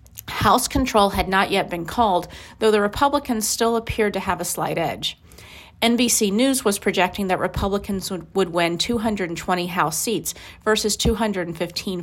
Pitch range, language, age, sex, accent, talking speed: 175-225 Hz, English, 40-59, female, American, 150 wpm